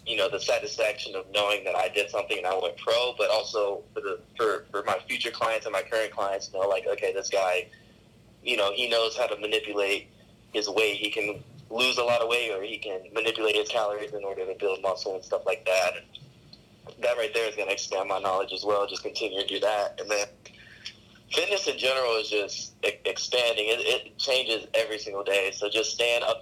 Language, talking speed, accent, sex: English, 225 wpm, American, male